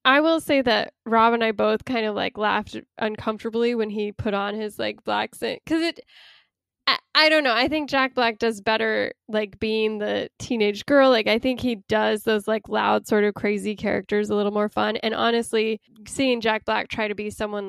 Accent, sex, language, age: American, female, English, 10-29